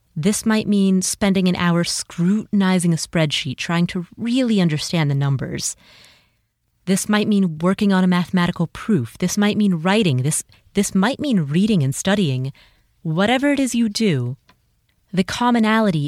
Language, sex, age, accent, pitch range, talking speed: English, female, 30-49, American, 150-205 Hz, 155 wpm